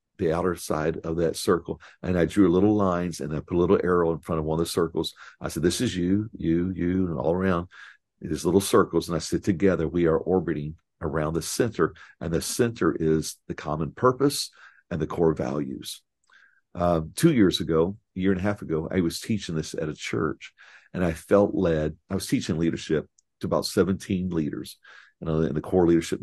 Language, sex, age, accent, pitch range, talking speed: English, male, 50-69, American, 80-95 Hz, 210 wpm